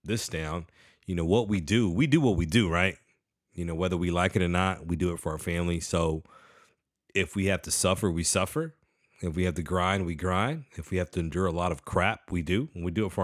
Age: 30-49